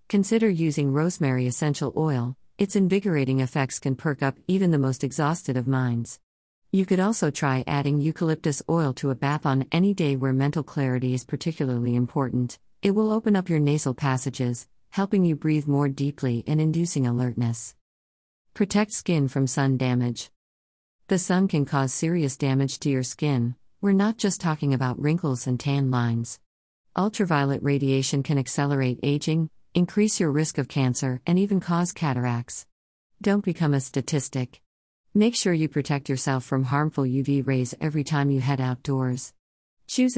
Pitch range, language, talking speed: 130-160 Hz, English, 160 wpm